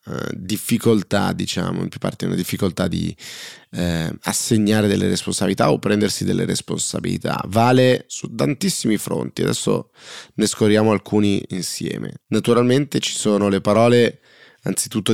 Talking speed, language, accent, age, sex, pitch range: 125 wpm, Italian, native, 20-39, male, 95-115 Hz